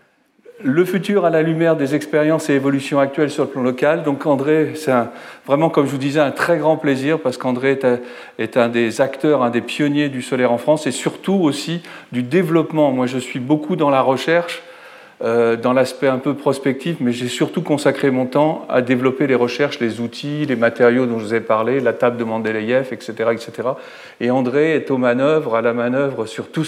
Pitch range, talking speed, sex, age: 125-150 Hz, 215 wpm, male, 40-59